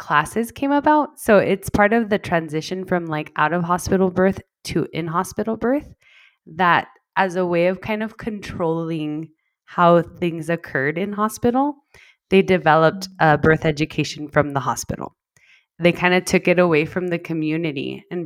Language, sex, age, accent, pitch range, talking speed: English, female, 20-39, American, 165-215 Hz, 165 wpm